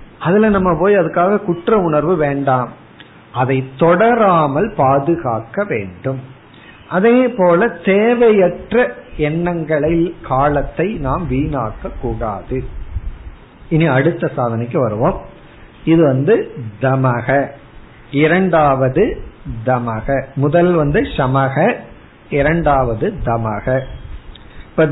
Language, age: Tamil, 50-69